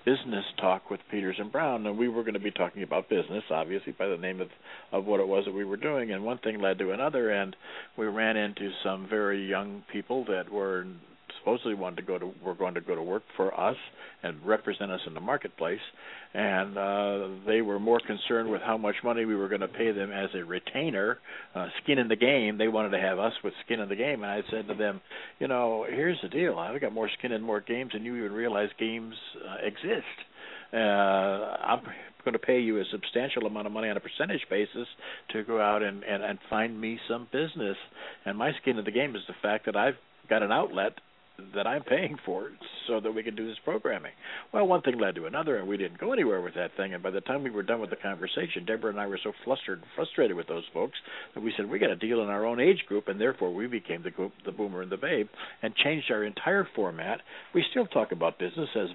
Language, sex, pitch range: English, male, 100-115 Hz